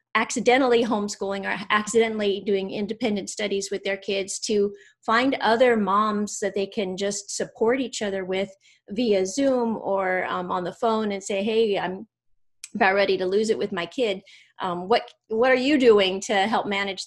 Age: 30-49